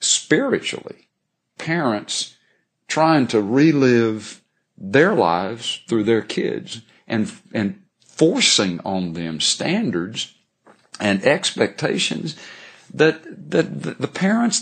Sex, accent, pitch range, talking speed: male, American, 105-125 Hz, 90 wpm